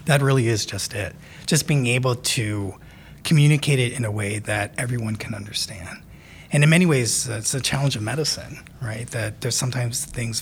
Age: 30-49